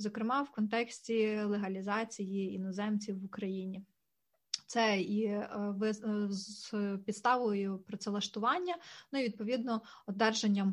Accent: native